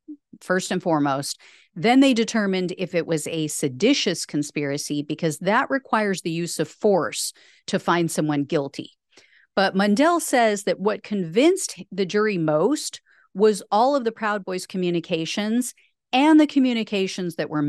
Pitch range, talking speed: 175-230 Hz, 150 wpm